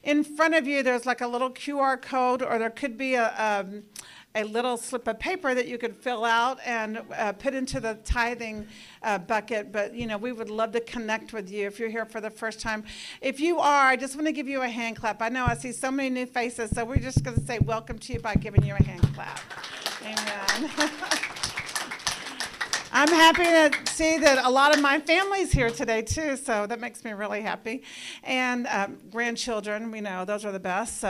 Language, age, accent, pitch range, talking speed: English, 50-69, American, 215-260 Hz, 225 wpm